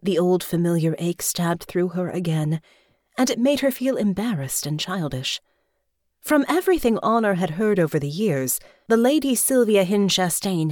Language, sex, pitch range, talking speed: English, female, 155-220 Hz, 160 wpm